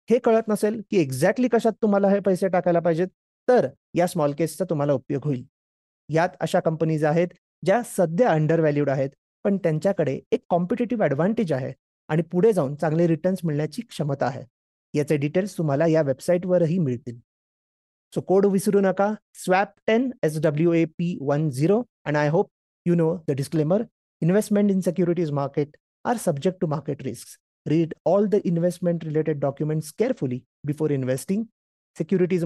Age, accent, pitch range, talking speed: 30-49, native, 150-200 Hz, 135 wpm